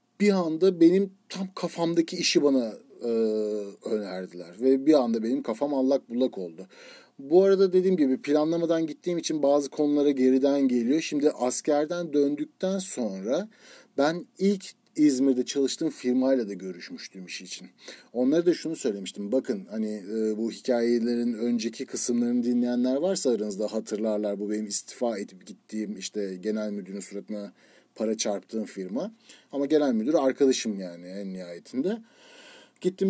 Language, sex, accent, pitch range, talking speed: Turkish, male, native, 115-170 Hz, 140 wpm